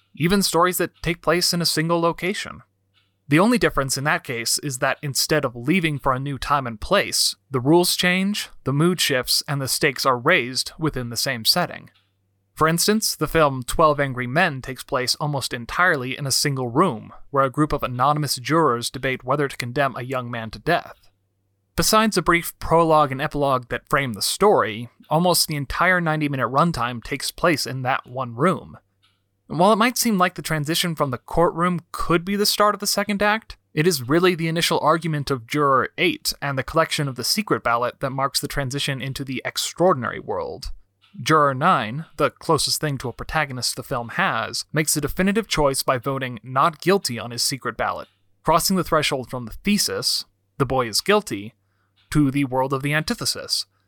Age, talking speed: 30-49, 195 wpm